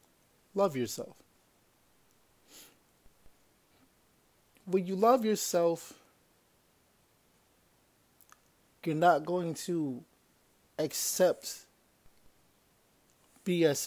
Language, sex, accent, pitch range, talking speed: English, male, American, 155-200 Hz, 50 wpm